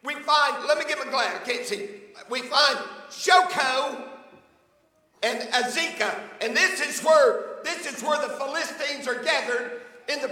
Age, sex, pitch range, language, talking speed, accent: 50-69, male, 275-330 Hz, English, 165 wpm, American